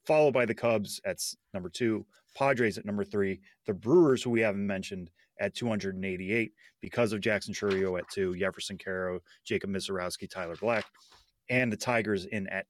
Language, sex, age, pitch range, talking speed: English, male, 30-49, 100-120 Hz, 170 wpm